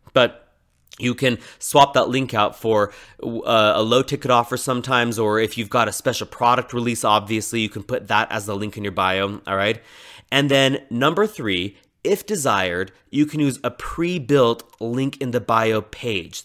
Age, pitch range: 30-49, 110-135 Hz